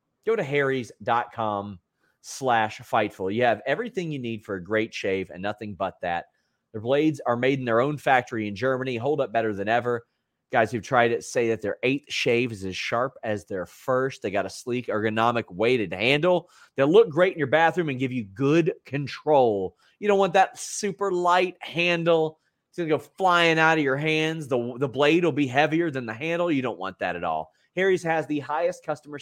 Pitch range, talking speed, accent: 110-150 Hz, 210 wpm, American